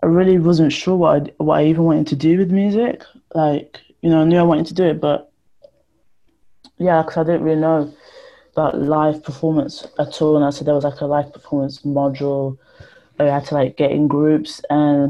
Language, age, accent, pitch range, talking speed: English, 20-39, British, 140-160 Hz, 210 wpm